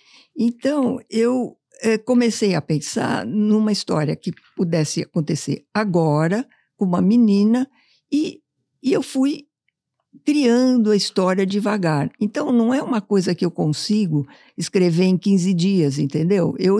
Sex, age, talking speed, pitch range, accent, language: female, 60-79, 130 wpm, 185-245 Hz, Brazilian, Portuguese